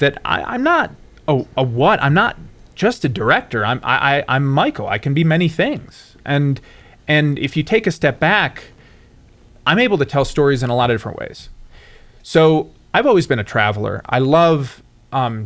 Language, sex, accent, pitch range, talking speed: English, male, American, 115-140 Hz, 190 wpm